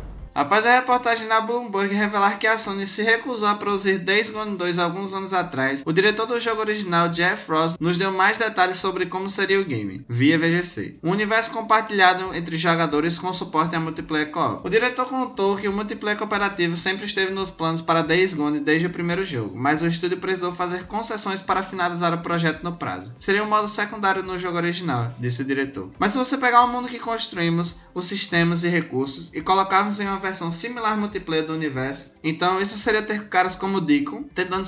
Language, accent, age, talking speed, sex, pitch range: Portuguese, Brazilian, 20-39, 200 wpm, male, 155-200 Hz